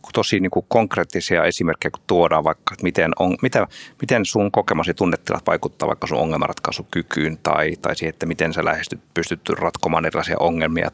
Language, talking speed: Finnish, 165 wpm